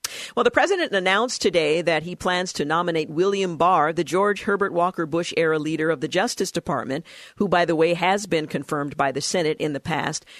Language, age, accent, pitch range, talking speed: English, 50-69, American, 160-195 Hz, 210 wpm